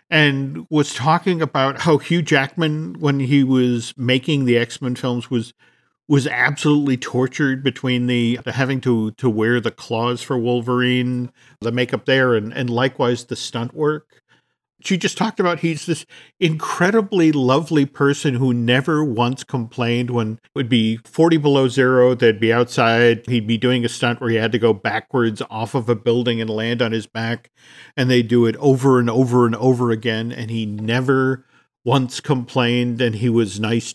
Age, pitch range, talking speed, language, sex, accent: 50-69, 120-145 Hz, 175 wpm, English, male, American